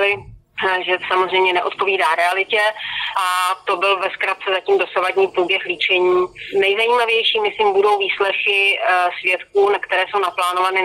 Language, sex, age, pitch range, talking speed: Slovak, female, 30-49, 180-195 Hz, 115 wpm